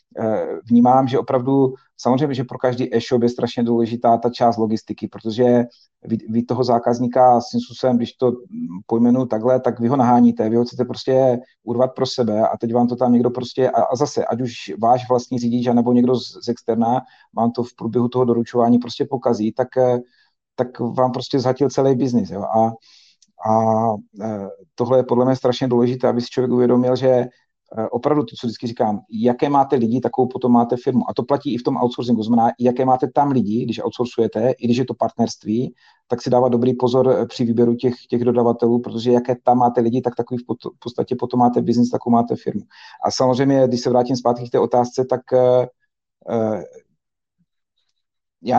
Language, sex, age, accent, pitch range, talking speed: Czech, male, 40-59, native, 120-130 Hz, 180 wpm